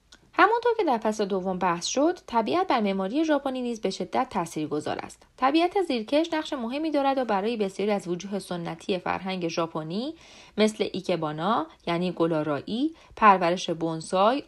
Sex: female